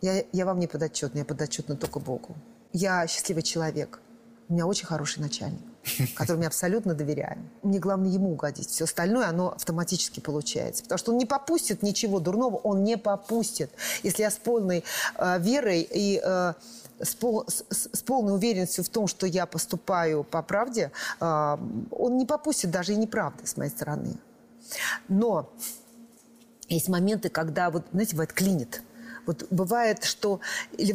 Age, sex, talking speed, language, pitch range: 40-59, female, 155 wpm, Russian, 175-230 Hz